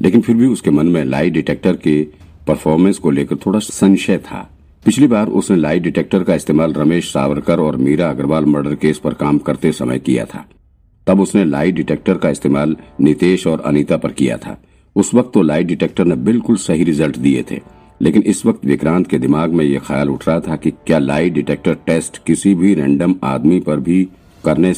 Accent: native